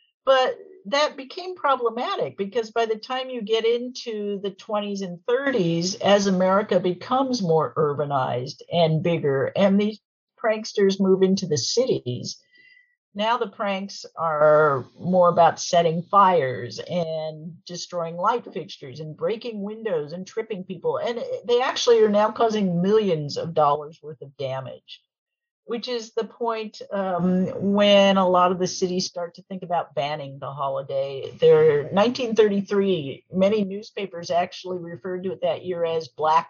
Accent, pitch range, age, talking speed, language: American, 165-225 Hz, 50-69, 145 wpm, English